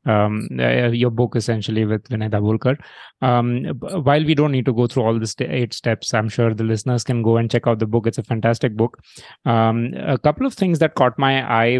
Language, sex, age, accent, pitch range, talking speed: English, male, 30-49, Indian, 115-130 Hz, 230 wpm